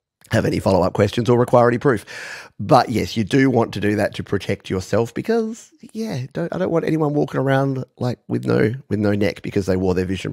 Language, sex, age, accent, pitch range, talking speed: English, male, 30-49, Australian, 100-130 Hz, 225 wpm